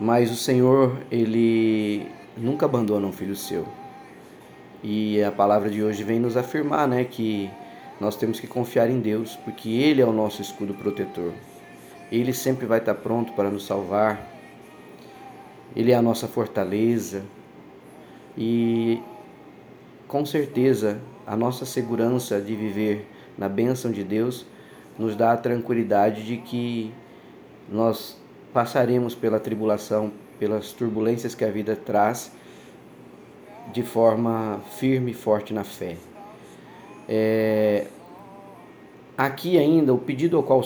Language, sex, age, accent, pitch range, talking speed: Portuguese, male, 20-39, Brazilian, 110-125 Hz, 130 wpm